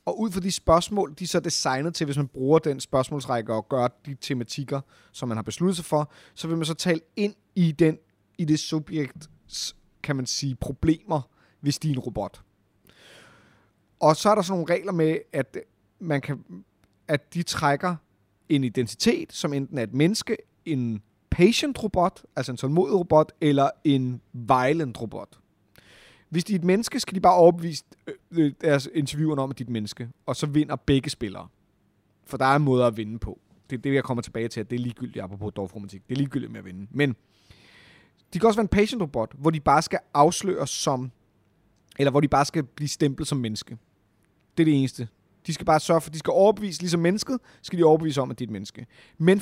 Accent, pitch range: native, 120-170 Hz